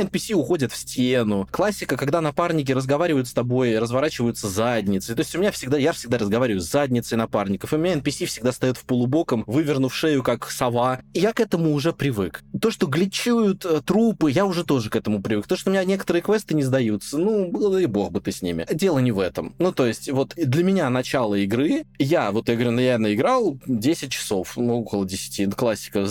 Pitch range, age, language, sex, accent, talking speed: 115-165 Hz, 20-39, Russian, male, native, 205 wpm